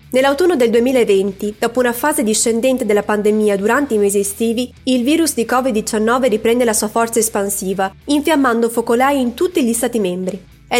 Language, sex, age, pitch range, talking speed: Italian, female, 20-39, 210-255 Hz, 165 wpm